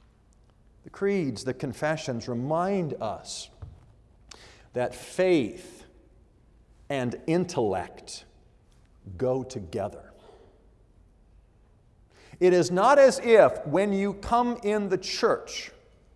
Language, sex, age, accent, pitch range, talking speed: English, male, 50-69, American, 160-235 Hz, 85 wpm